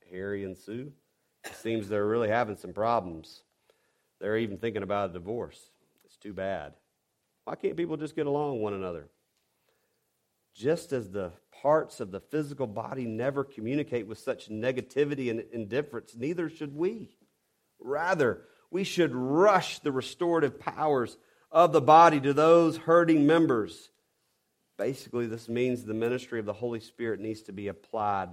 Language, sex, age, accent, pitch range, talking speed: English, male, 40-59, American, 110-145 Hz, 155 wpm